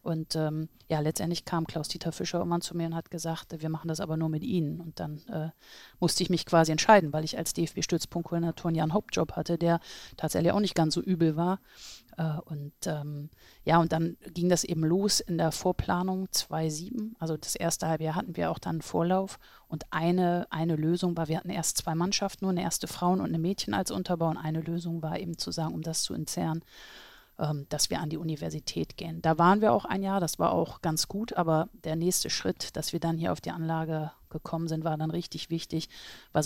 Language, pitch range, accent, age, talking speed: German, 160-180 Hz, German, 30-49, 220 wpm